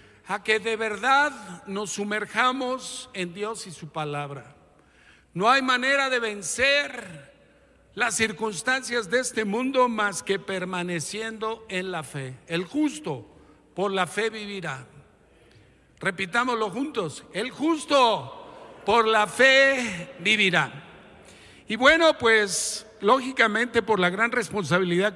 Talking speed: 115 wpm